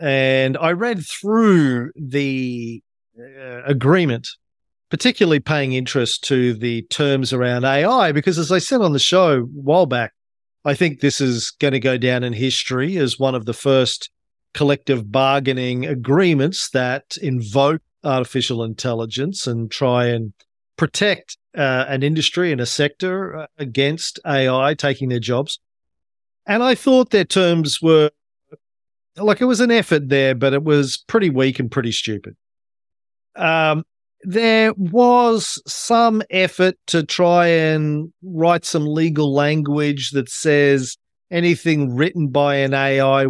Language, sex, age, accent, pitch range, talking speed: English, male, 40-59, Australian, 125-155 Hz, 140 wpm